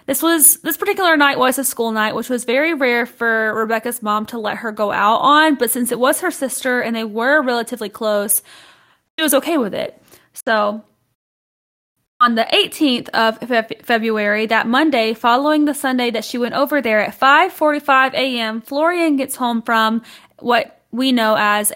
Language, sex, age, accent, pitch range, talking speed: English, female, 20-39, American, 230-290 Hz, 175 wpm